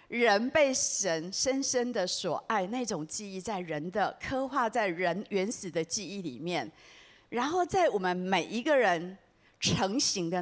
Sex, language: female, Chinese